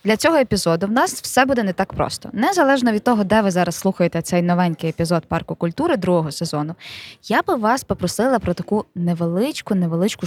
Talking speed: 180 wpm